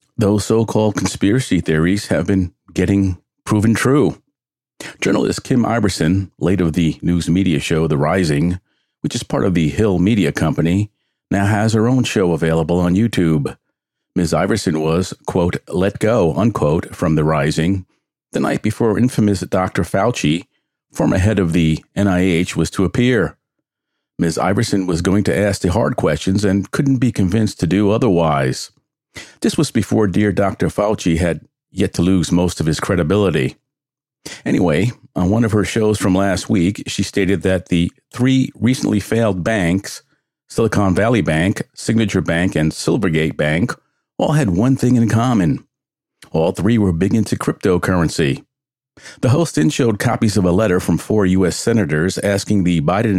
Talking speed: 160 wpm